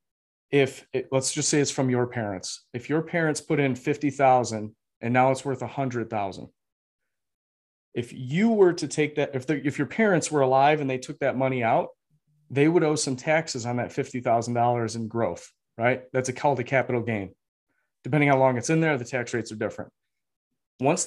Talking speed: 190 wpm